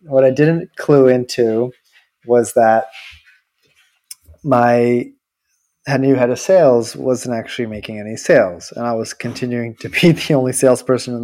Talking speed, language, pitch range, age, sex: 145 wpm, English, 110-135 Hz, 20-39, male